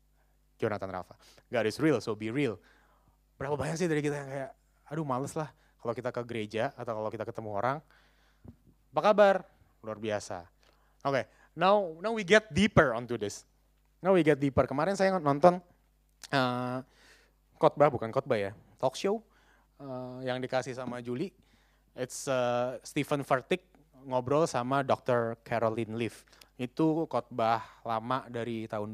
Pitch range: 115-150 Hz